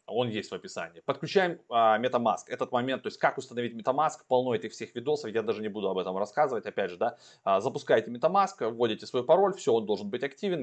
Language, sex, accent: Russian, male, native